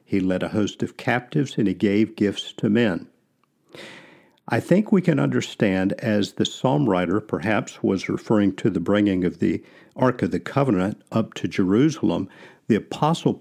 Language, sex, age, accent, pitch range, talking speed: English, male, 50-69, American, 100-130 Hz, 170 wpm